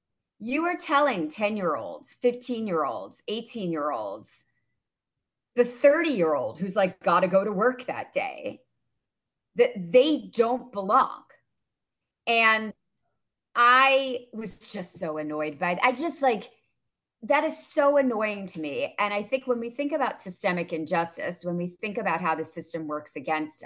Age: 30-49